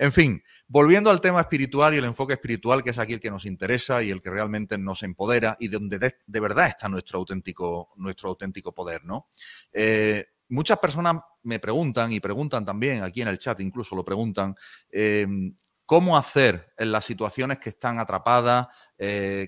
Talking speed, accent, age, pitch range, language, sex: 190 wpm, Spanish, 30-49, 100-130 Hz, Spanish, male